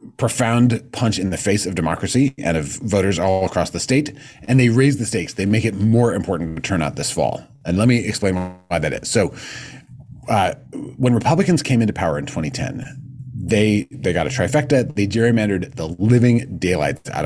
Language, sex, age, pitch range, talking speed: English, male, 30-49, 95-130 Hz, 195 wpm